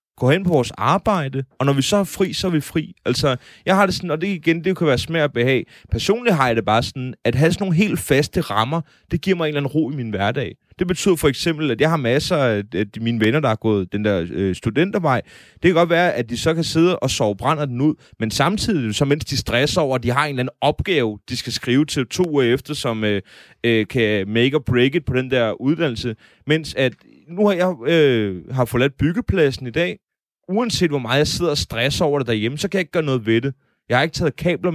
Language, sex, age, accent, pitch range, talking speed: Danish, male, 30-49, native, 120-165 Hz, 260 wpm